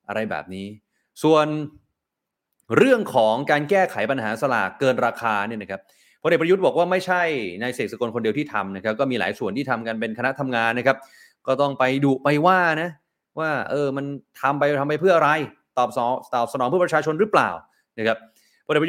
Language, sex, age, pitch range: Thai, male, 20-39, 115-150 Hz